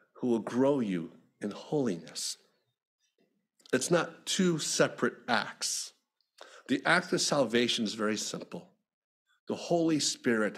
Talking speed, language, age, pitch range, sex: 120 wpm, English, 50-69, 125-175 Hz, male